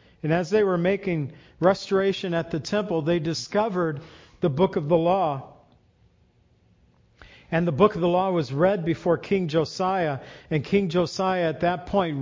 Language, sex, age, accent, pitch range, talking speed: English, male, 50-69, American, 150-185 Hz, 160 wpm